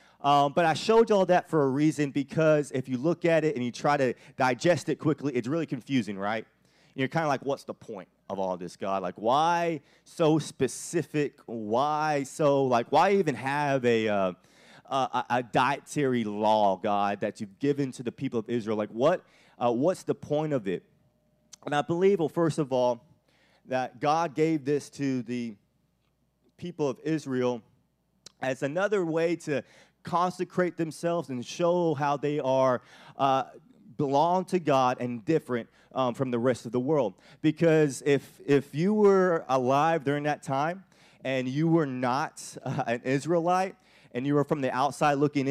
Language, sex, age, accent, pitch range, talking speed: English, male, 30-49, American, 125-160 Hz, 180 wpm